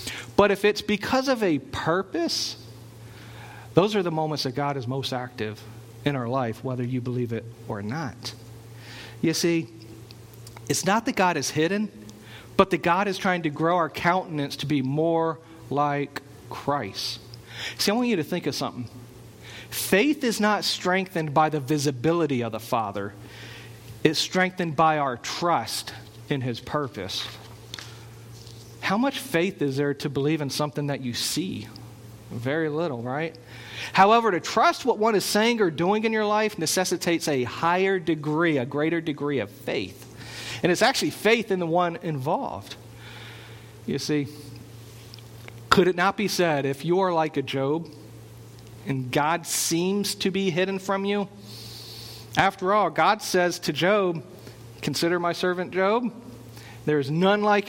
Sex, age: male, 40-59